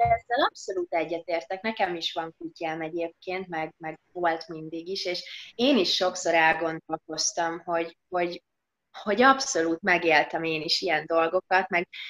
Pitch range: 165-215 Hz